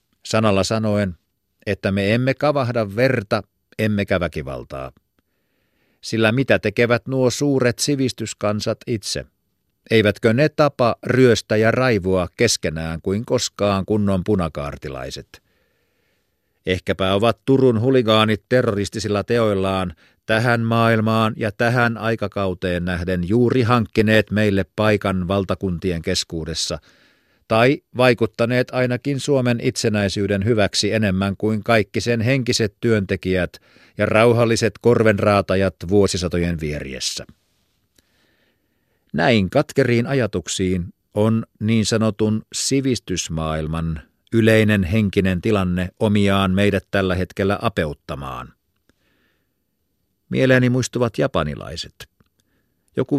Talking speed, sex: 90 wpm, male